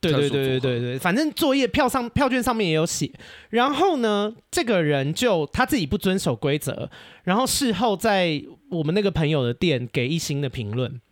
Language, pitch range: Chinese, 155-245 Hz